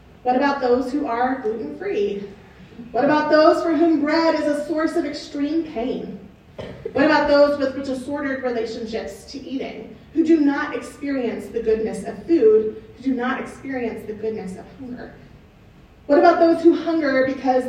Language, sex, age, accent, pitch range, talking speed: English, female, 30-49, American, 230-305 Hz, 165 wpm